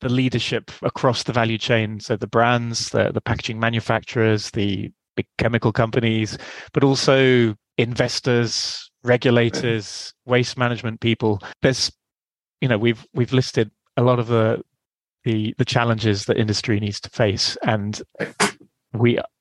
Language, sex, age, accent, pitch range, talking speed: English, male, 30-49, British, 110-125 Hz, 135 wpm